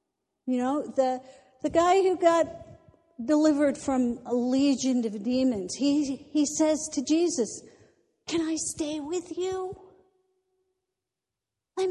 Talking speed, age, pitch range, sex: 120 wpm, 50-69, 230-300 Hz, female